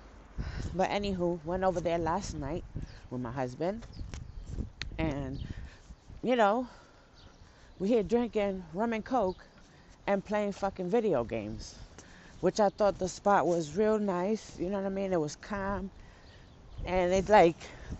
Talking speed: 145 wpm